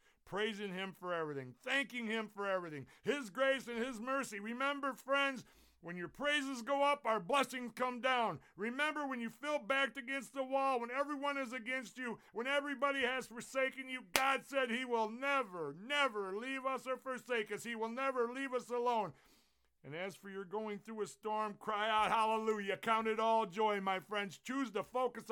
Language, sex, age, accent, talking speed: English, male, 50-69, American, 185 wpm